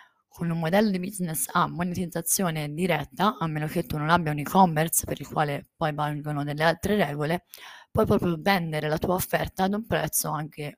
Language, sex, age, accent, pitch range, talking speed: Italian, female, 20-39, native, 150-175 Hz, 190 wpm